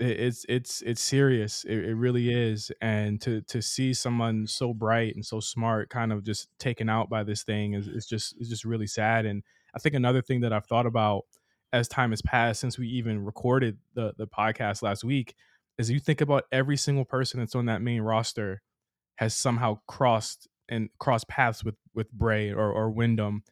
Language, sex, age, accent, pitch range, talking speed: English, male, 20-39, American, 110-135 Hz, 200 wpm